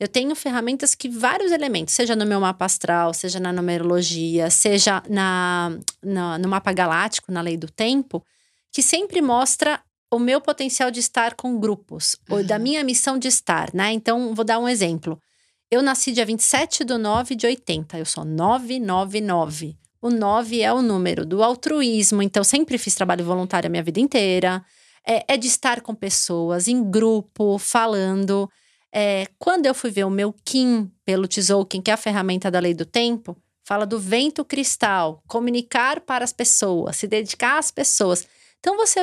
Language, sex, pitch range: Portuguese, female, 190-270 Hz